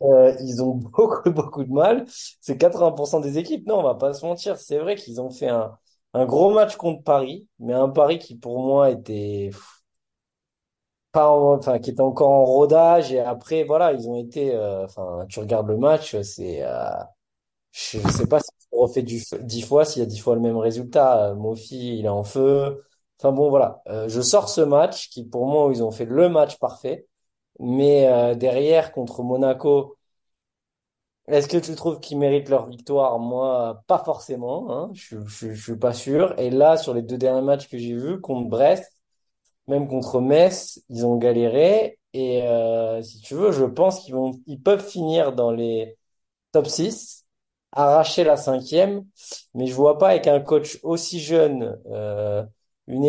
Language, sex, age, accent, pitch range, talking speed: French, male, 20-39, French, 120-155 Hz, 190 wpm